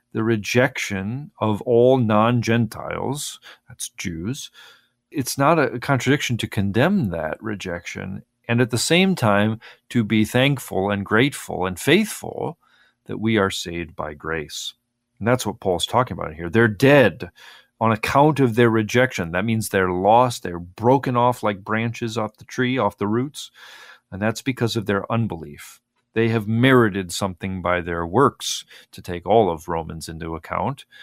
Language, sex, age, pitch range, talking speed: English, male, 40-59, 95-125 Hz, 160 wpm